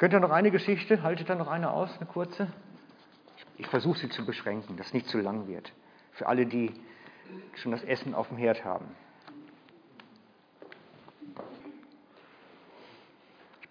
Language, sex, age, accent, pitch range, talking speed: German, male, 50-69, German, 145-200 Hz, 150 wpm